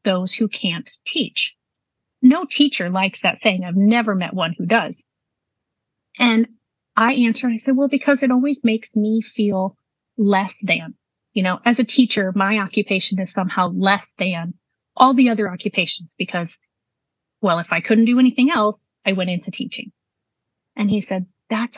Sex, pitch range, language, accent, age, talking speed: female, 195-240 Hz, English, American, 30-49, 165 wpm